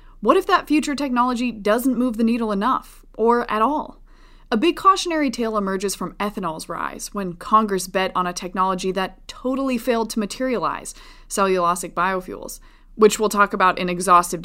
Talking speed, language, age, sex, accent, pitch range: 165 wpm, English, 20-39, female, American, 185-255 Hz